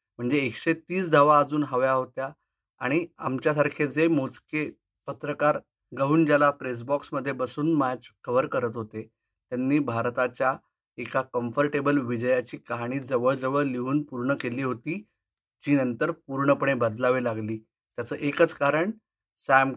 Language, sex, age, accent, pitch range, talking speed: Marathi, male, 30-49, native, 125-150 Hz, 125 wpm